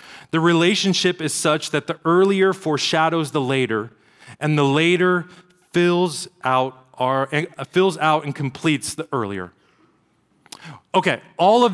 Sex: male